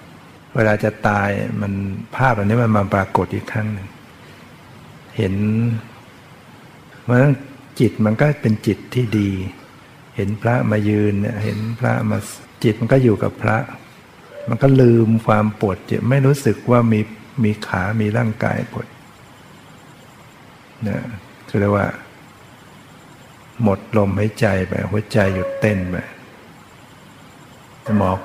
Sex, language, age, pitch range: male, Thai, 60-79, 100-115 Hz